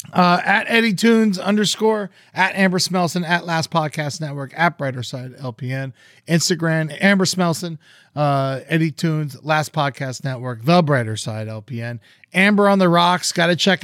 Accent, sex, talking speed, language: American, male, 155 wpm, English